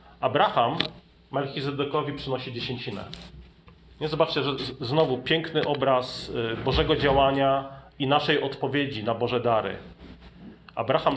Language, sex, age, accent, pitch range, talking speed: Polish, male, 40-59, native, 125-160 Hz, 100 wpm